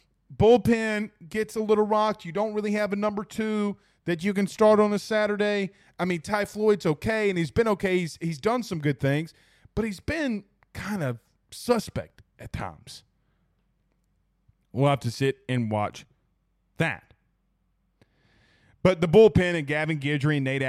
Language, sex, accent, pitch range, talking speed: English, male, American, 130-180 Hz, 165 wpm